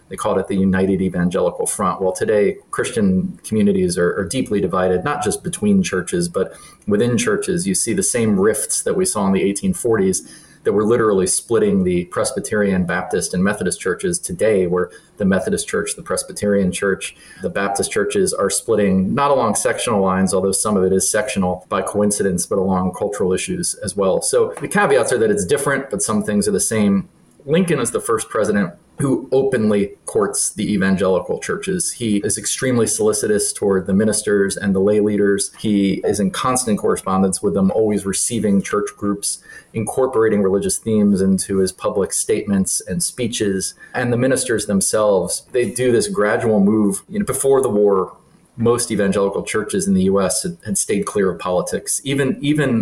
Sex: male